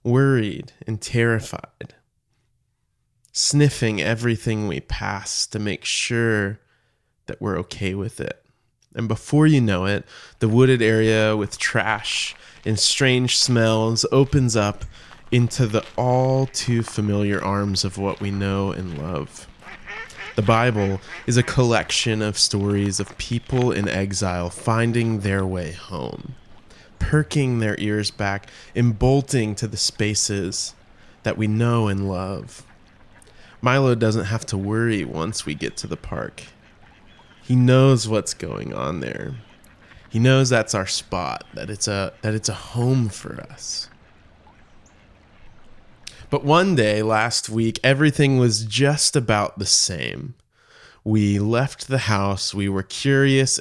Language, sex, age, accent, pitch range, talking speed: English, male, 20-39, American, 100-125 Hz, 135 wpm